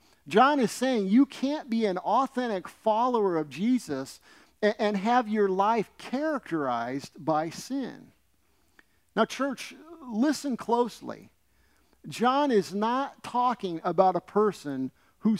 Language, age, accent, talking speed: English, 50-69, American, 115 wpm